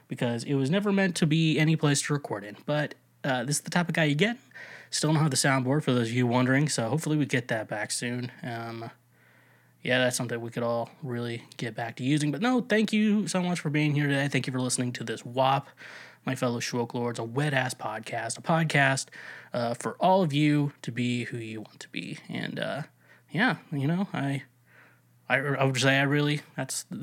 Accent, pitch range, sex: American, 125-160 Hz, male